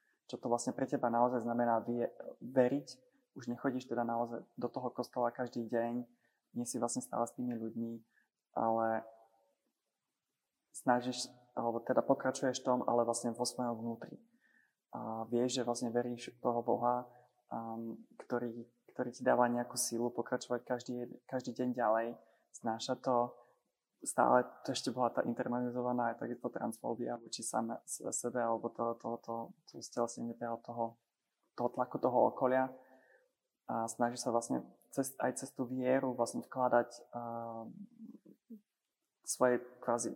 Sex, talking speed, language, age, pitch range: male, 140 wpm, Slovak, 20-39, 115-125 Hz